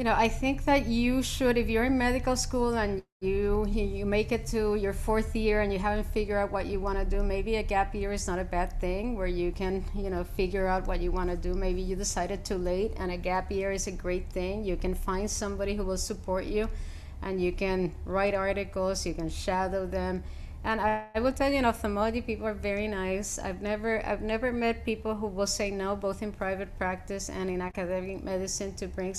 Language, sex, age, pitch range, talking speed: English, female, 30-49, 185-210 Hz, 230 wpm